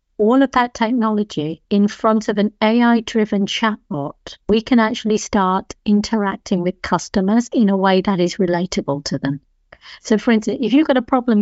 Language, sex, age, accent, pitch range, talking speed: English, female, 50-69, British, 190-225 Hz, 175 wpm